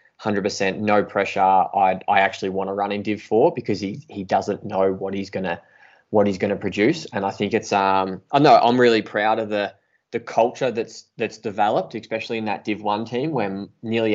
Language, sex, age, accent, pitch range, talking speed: English, male, 20-39, Australian, 95-110 Hz, 215 wpm